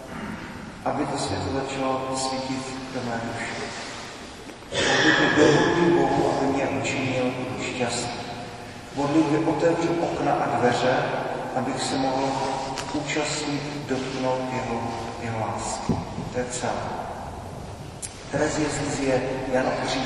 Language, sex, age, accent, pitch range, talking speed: Czech, male, 40-59, native, 125-140 Hz, 115 wpm